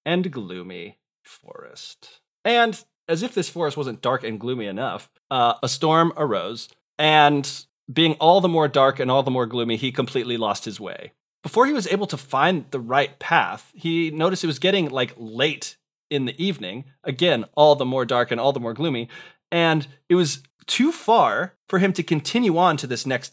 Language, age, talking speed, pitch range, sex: English, 30-49, 195 wpm, 125-170 Hz, male